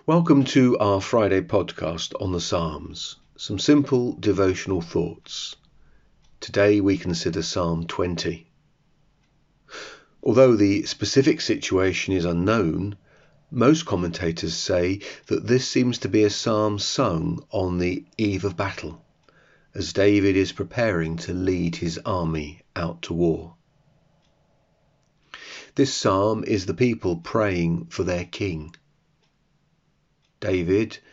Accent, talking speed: British, 115 wpm